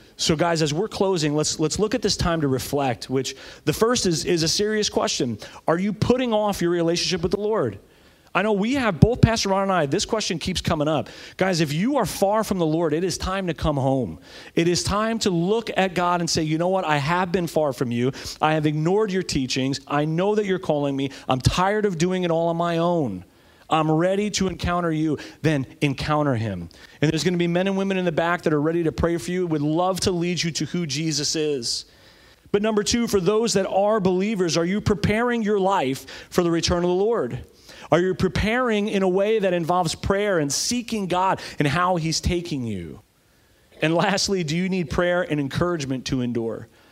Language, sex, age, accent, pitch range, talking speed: English, male, 40-59, American, 150-190 Hz, 225 wpm